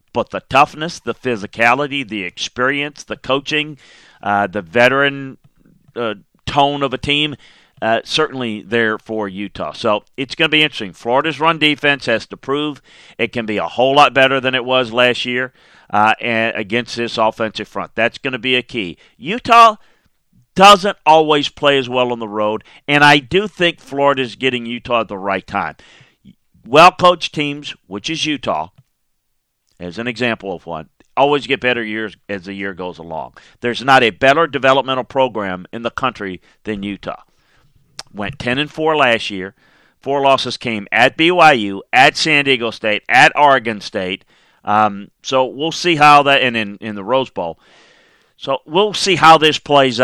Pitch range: 110-145 Hz